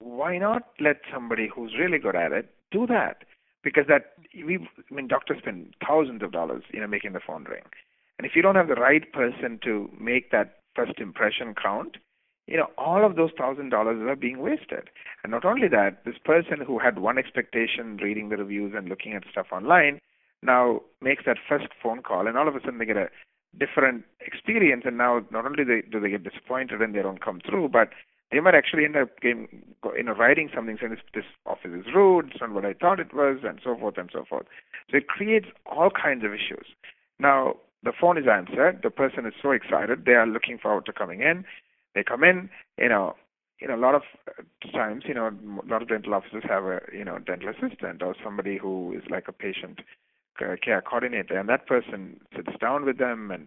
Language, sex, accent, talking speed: English, male, Indian, 215 wpm